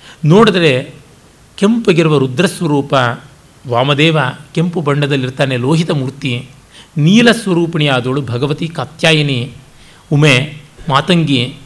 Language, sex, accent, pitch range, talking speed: Kannada, male, native, 135-175 Hz, 70 wpm